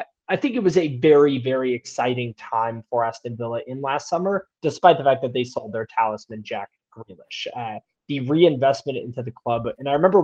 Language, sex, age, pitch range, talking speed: English, male, 20-39, 115-145 Hz, 200 wpm